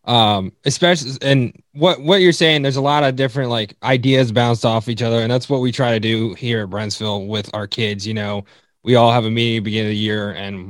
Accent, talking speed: American, 250 wpm